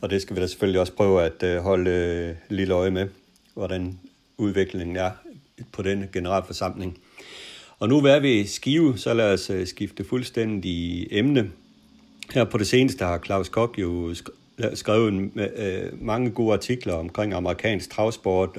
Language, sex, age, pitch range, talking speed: Danish, male, 60-79, 90-110 Hz, 160 wpm